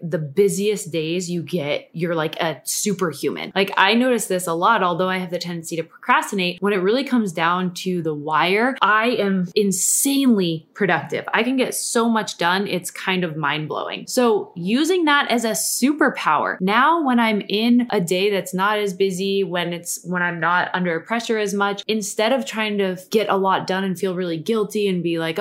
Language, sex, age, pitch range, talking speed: English, female, 20-39, 165-215 Hz, 200 wpm